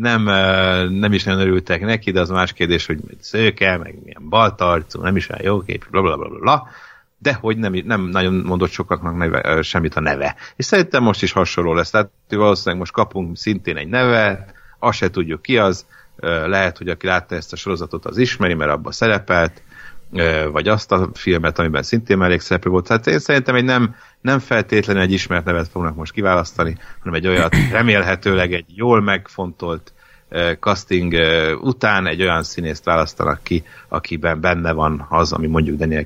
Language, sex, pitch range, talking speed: Hungarian, male, 85-100 Hz, 185 wpm